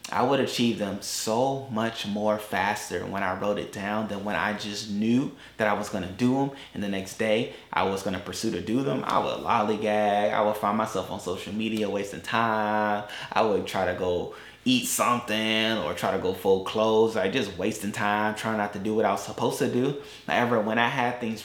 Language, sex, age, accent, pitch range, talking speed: English, male, 30-49, American, 105-120 Hz, 225 wpm